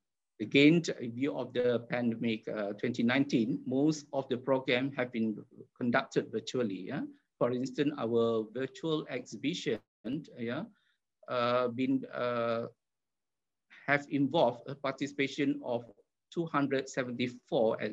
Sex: male